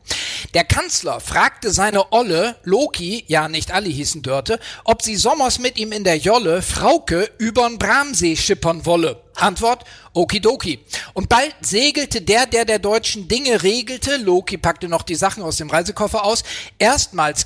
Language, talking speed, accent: German, 155 wpm, German